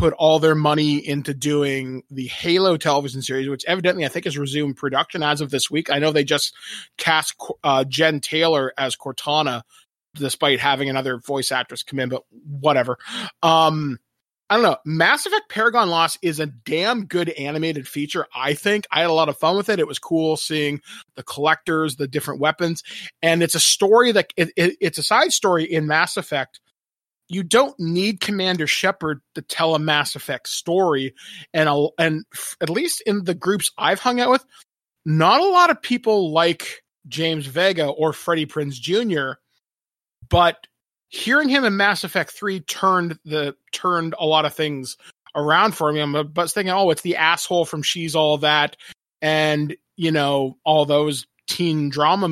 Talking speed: 180 wpm